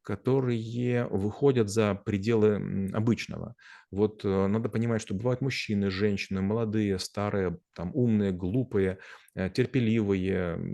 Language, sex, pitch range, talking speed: Russian, male, 95-115 Hz, 100 wpm